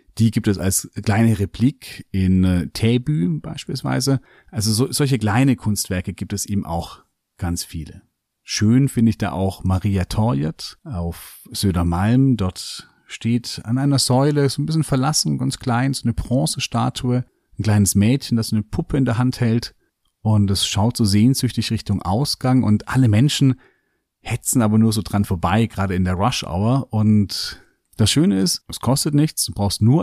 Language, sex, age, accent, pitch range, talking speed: German, male, 40-59, German, 95-125 Hz, 170 wpm